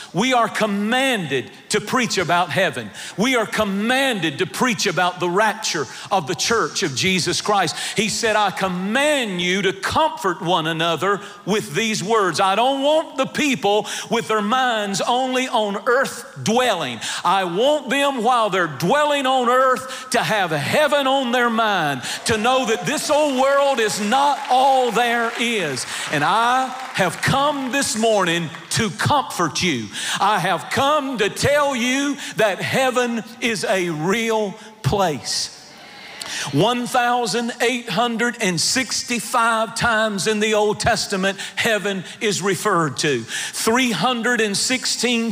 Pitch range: 200-255 Hz